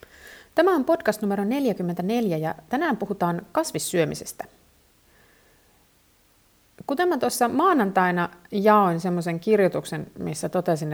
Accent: native